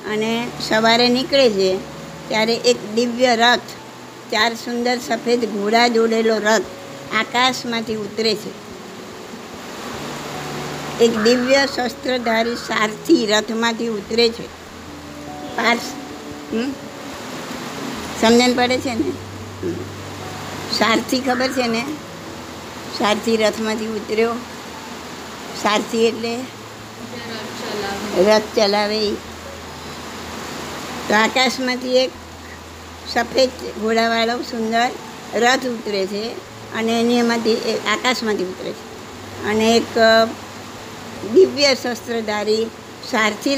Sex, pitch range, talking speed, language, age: male, 220-245 Hz, 80 wpm, Gujarati, 60-79